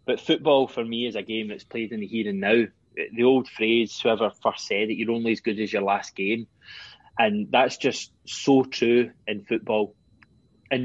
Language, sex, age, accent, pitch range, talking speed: English, male, 20-39, British, 110-135 Hz, 205 wpm